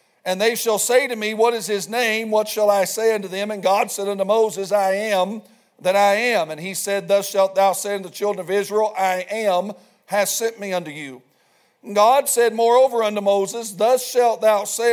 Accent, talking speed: American, 220 wpm